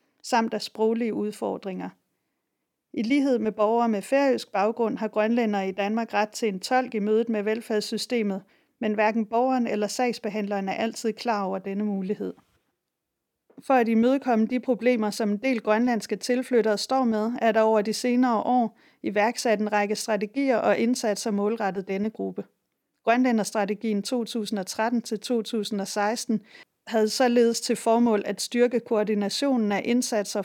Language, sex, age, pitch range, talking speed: Danish, female, 40-59, 210-240 Hz, 140 wpm